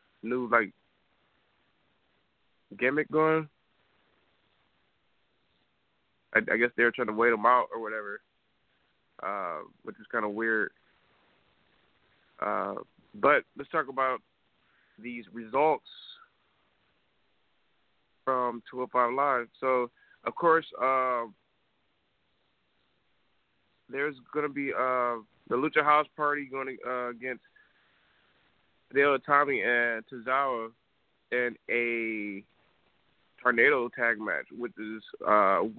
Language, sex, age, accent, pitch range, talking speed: English, male, 20-39, American, 115-135 Hz, 95 wpm